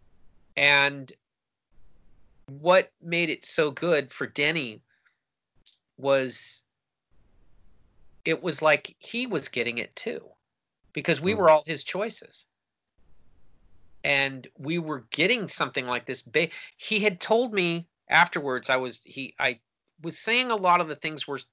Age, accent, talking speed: 40-59, American, 130 wpm